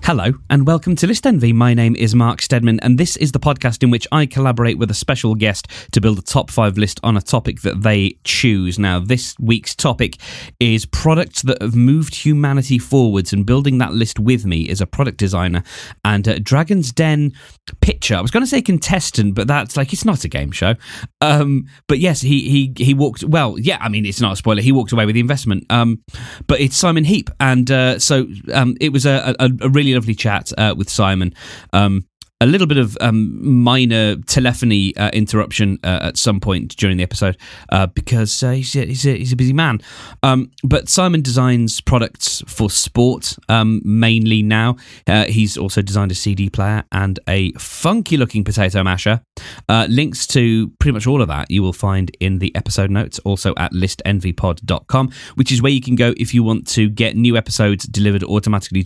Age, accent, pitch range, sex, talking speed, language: 20-39, British, 100-130 Hz, male, 200 wpm, English